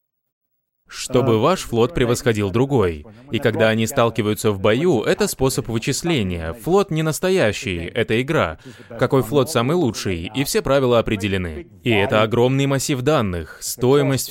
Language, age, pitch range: Russian, 20-39, 105-145 Hz